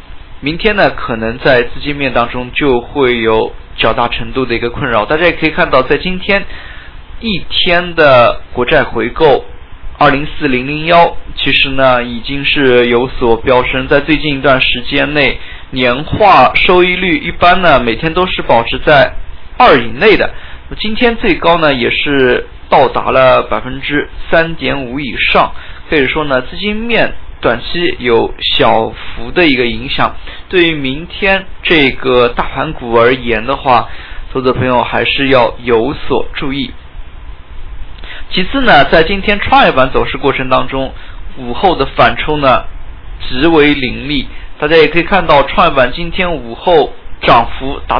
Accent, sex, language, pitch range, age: native, male, Chinese, 120-170 Hz, 20-39